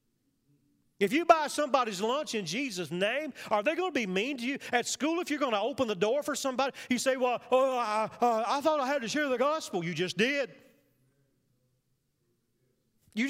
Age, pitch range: 40-59, 130-220 Hz